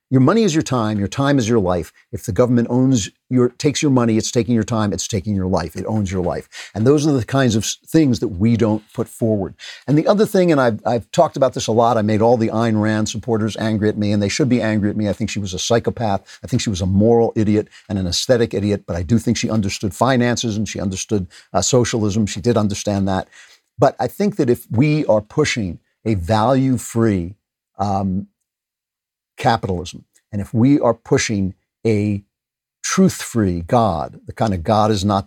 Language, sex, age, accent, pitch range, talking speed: English, male, 50-69, American, 100-120 Hz, 220 wpm